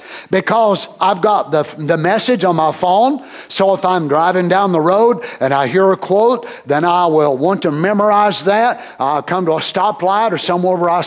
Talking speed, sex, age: 200 wpm, male, 60-79